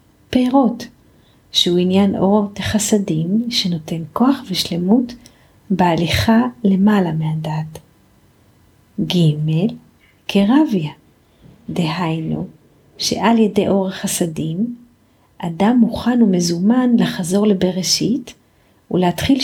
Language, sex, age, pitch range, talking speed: Hebrew, female, 40-59, 175-220 Hz, 75 wpm